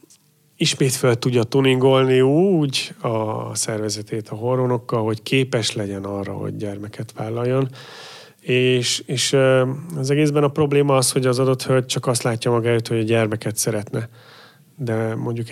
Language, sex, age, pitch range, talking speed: Hungarian, male, 30-49, 115-135 Hz, 145 wpm